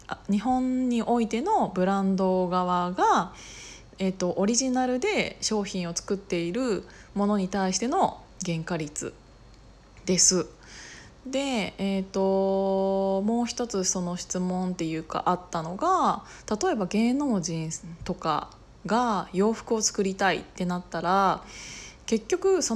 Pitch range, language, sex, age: 175-230 Hz, Japanese, female, 20-39